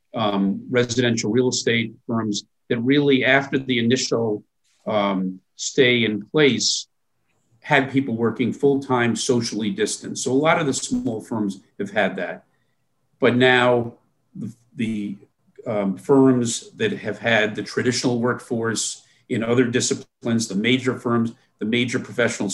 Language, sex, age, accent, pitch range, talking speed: English, male, 50-69, American, 110-135 Hz, 135 wpm